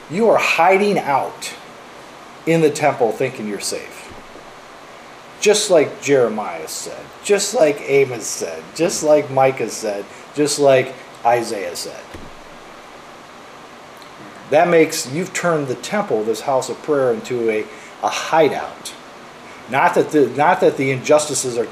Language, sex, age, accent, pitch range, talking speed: English, male, 40-59, American, 120-185 Hz, 135 wpm